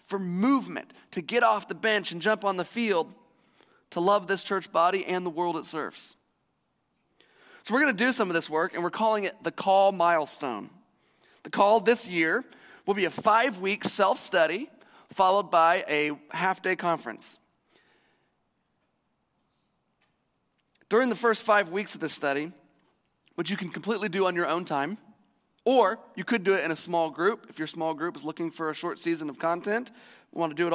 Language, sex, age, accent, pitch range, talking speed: English, male, 30-49, American, 165-220 Hz, 185 wpm